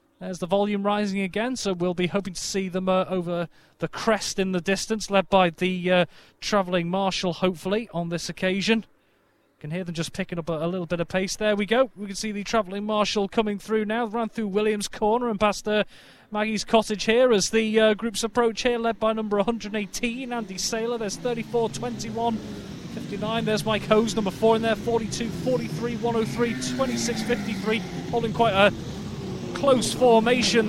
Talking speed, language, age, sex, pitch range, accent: 190 wpm, English, 30-49, male, 175-215 Hz, British